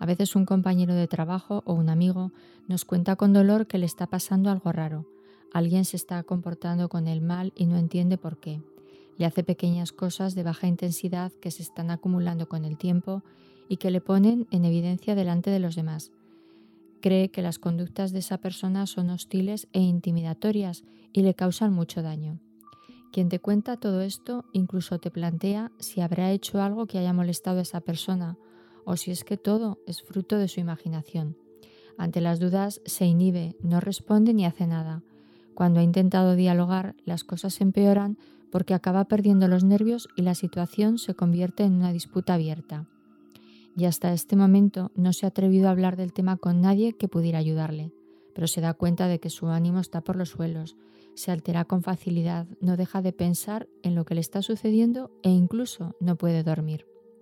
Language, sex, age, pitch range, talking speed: Spanish, female, 20-39, 170-195 Hz, 190 wpm